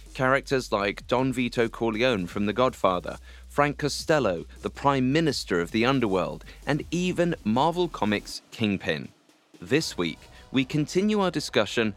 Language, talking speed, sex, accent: English, 135 wpm, male, British